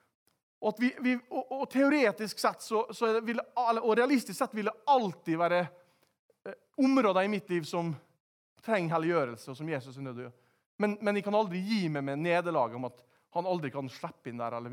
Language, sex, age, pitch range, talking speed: English, male, 30-49, 165-230 Hz, 185 wpm